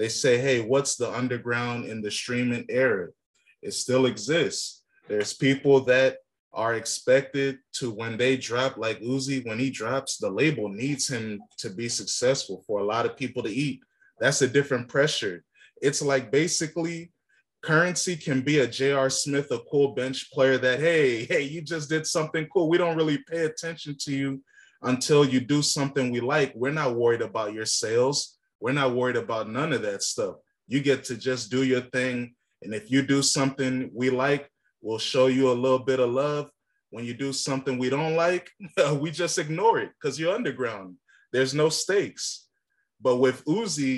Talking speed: 185 wpm